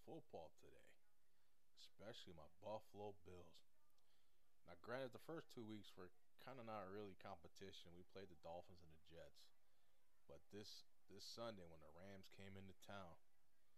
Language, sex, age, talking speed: English, male, 20-39, 150 wpm